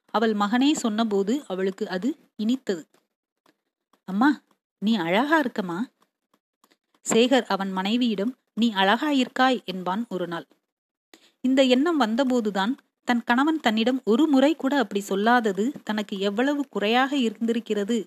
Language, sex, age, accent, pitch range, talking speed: Tamil, female, 30-49, native, 205-265 Hz, 105 wpm